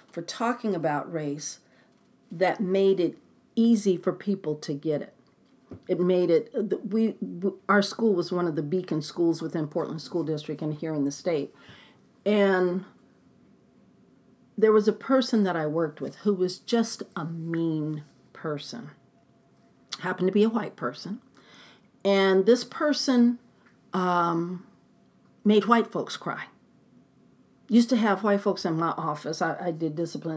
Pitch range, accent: 170-225 Hz, American